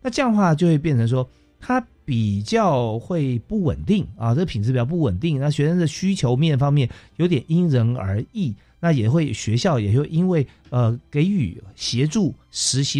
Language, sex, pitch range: Chinese, male, 110-155 Hz